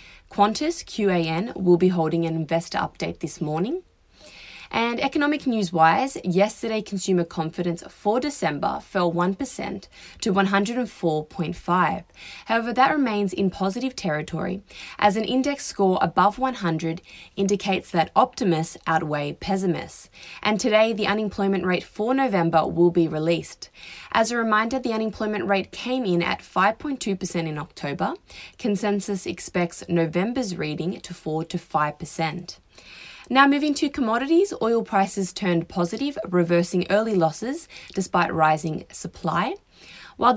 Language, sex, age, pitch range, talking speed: English, female, 20-39, 165-225 Hz, 120 wpm